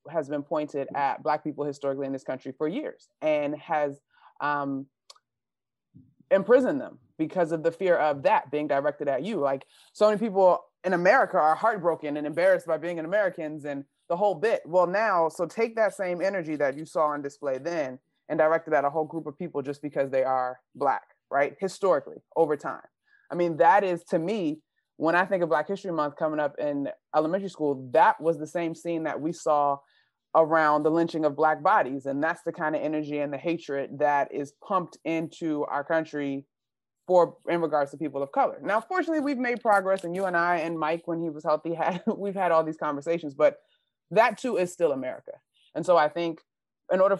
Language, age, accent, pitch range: English, 30-49, American, 145-180 Hz